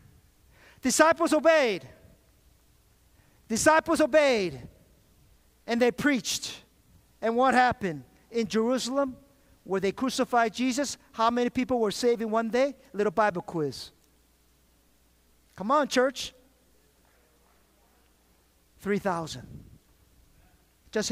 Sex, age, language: male, 50-69, English